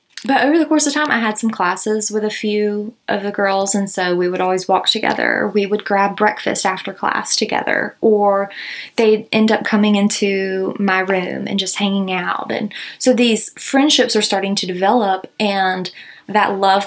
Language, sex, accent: English, female, American